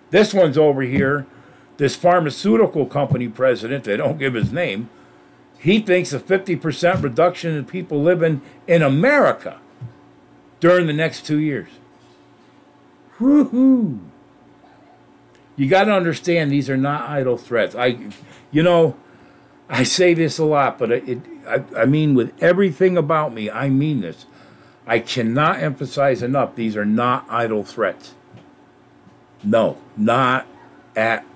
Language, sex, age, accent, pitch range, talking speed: English, male, 50-69, American, 110-160 Hz, 135 wpm